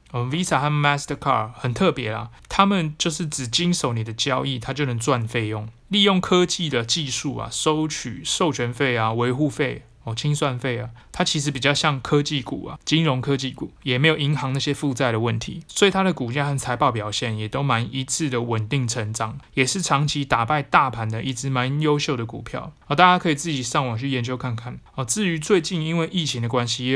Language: Chinese